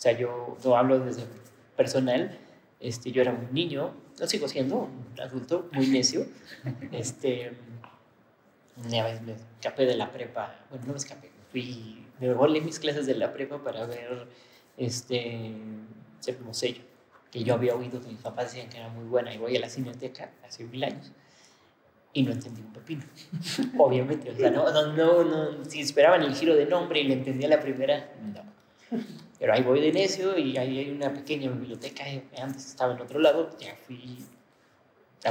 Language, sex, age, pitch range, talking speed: Spanish, male, 30-49, 125-145 Hz, 180 wpm